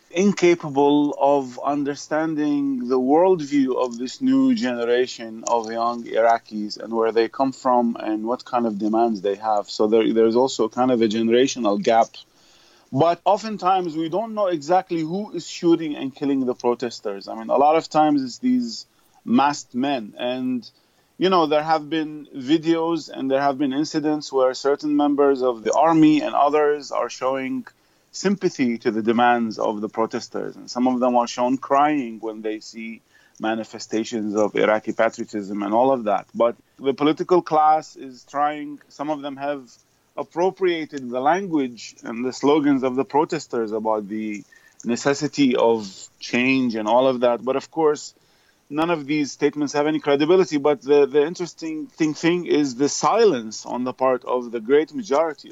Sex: male